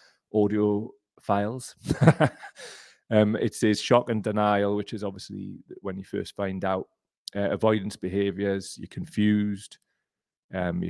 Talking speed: 125 wpm